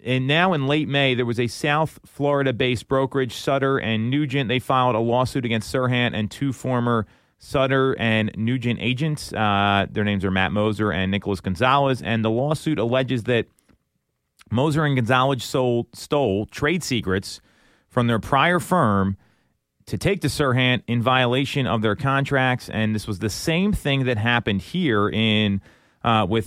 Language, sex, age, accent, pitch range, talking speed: English, male, 30-49, American, 105-130 Hz, 165 wpm